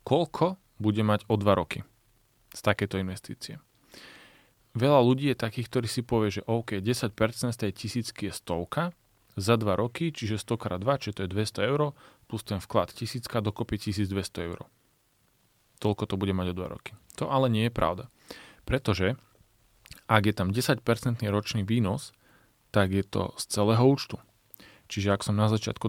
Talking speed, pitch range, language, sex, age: 165 wpm, 100-120 Hz, Slovak, male, 30-49